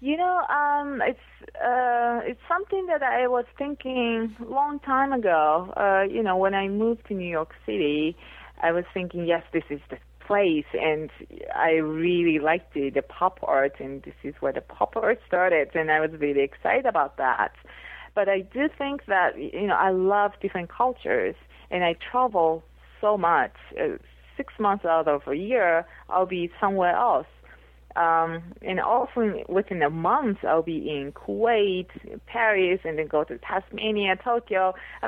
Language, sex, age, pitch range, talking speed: English, female, 30-49, 160-235 Hz, 170 wpm